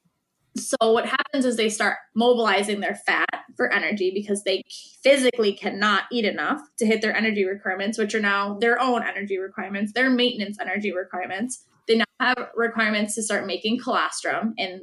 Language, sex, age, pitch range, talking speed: English, female, 20-39, 195-235 Hz, 170 wpm